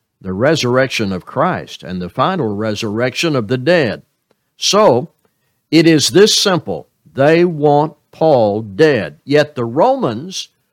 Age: 60-79